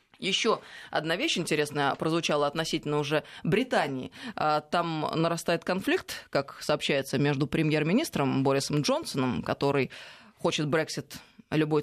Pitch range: 150-190 Hz